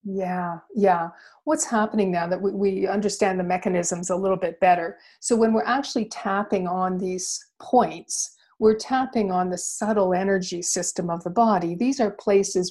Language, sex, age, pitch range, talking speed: English, female, 50-69, 185-225 Hz, 170 wpm